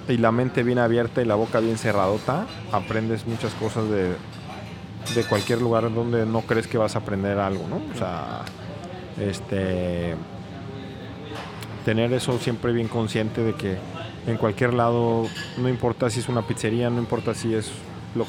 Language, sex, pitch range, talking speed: Spanish, male, 100-120 Hz, 165 wpm